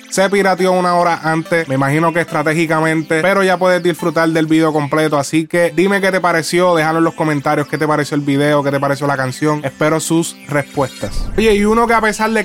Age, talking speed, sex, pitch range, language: 20-39, 220 wpm, male, 160-195 Hz, Spanish